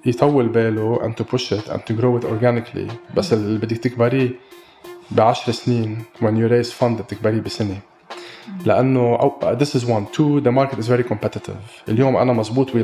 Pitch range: 110-125 Hz